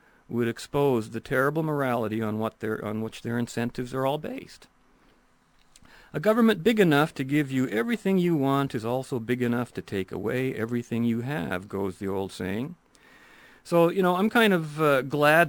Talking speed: 180 wpm